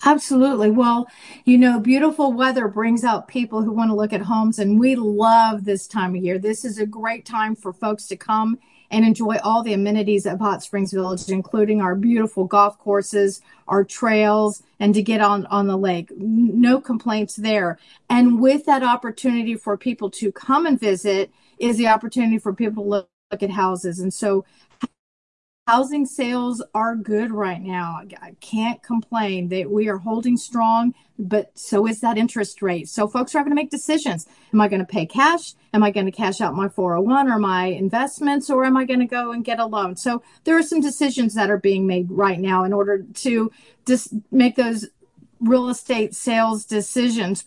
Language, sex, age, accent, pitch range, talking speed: English, female, 40-59, American, 205-245 Hz, 195 wpm